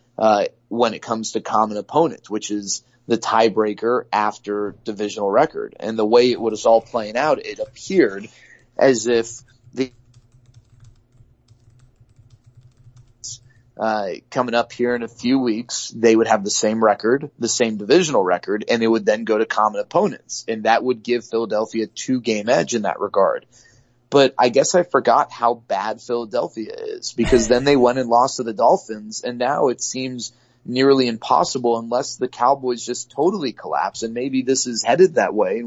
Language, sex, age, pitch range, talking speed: English, male, 30-49, 115-125 Hz, 170 wpm